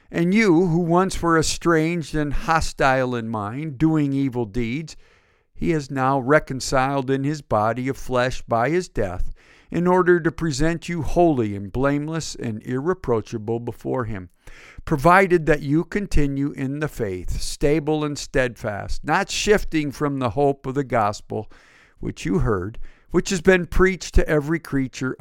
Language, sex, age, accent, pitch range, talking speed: English, male, 50-69, American, 120-155 Hz, 155 wpm